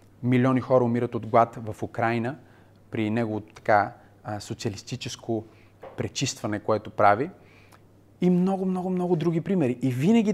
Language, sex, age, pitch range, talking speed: Bulgarian, male, 30-49, 105-135 Hz, 115 wpm